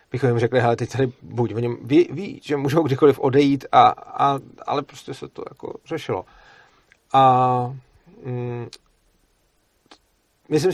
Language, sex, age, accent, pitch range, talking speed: Czech, male, 40-59, native, 120-140 Hz, 135 wpm